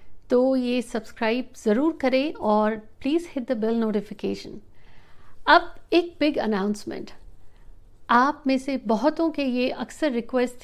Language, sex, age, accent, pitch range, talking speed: Hindi, female, 60-79, native, 215-260 Hz, 130 wpm